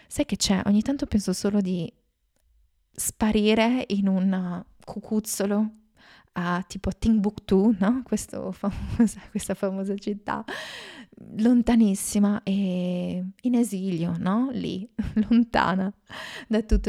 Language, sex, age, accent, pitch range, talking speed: Italian, female, 20-39, native, 185-215 Hz, 105 wpm